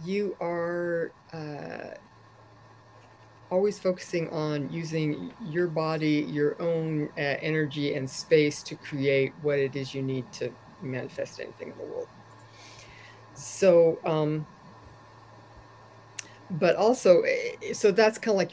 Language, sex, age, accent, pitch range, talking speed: English, female, 50-69, American, 135-175 Hz, 120 wpm